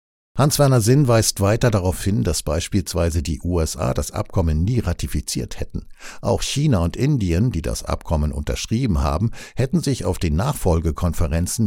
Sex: male